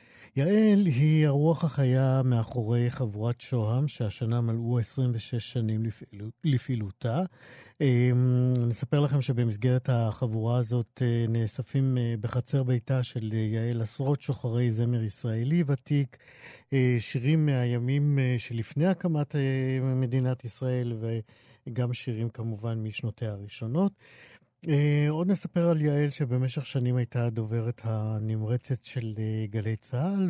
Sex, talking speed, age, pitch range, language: male, 105 wpm, 50-69, 115-135 Hz, Hebrew